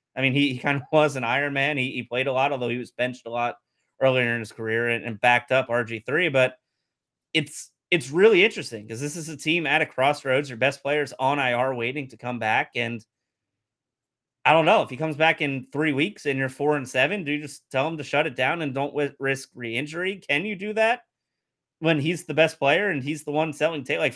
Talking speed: 240 wpm